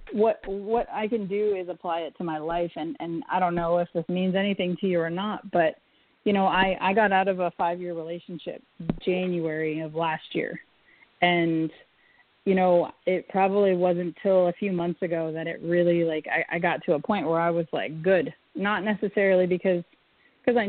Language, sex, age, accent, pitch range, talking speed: English, female, 30-49, American, 170-195 Hz, 205 wpm